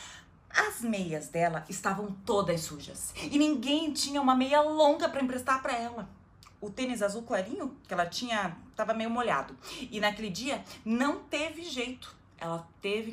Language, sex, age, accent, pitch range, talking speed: Portuguese, female, 20-39, Brazilian, 175-295 Hz, 155 wpm